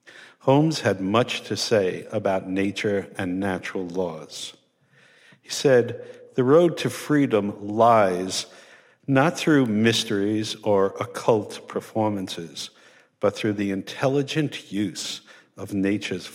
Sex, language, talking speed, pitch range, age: male, English, 110 wpm, 95-120 Hz, 50-69